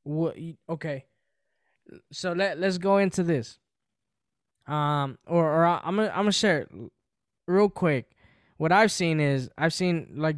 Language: English